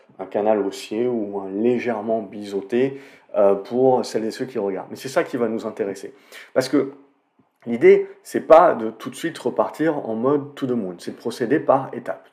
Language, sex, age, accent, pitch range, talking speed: French, male, 40-59, French, 105-140 Hz, 200 wpm